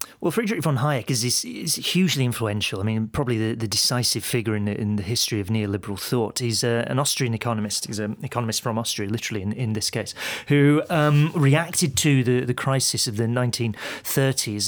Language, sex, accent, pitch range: English, male, British, 110-130 Hz